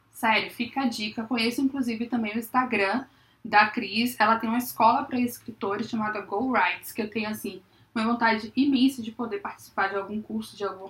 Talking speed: 185 wpm